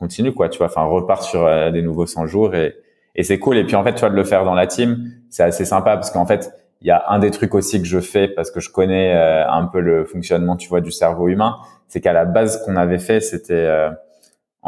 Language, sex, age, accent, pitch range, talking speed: French, male, 20-39, French, 85-100 Hz, 280 wpm